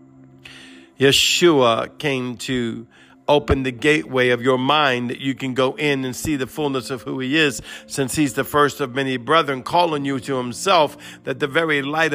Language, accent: English, American